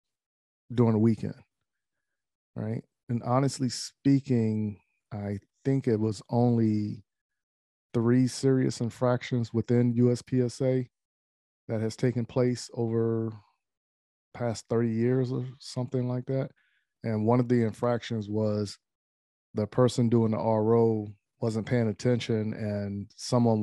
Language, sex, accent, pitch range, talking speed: English, male, American, 105-120 Hz, 115 wpm